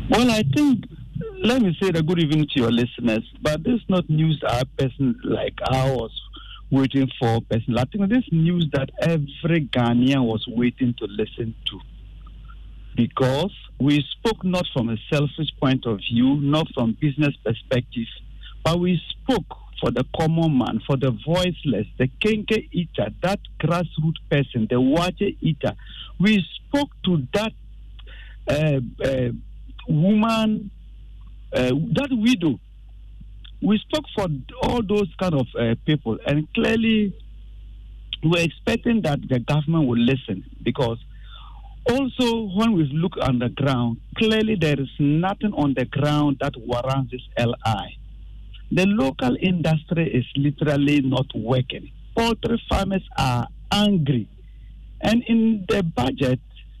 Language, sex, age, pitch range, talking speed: English, male, 50-69, 125-185 Hz, 140 wpm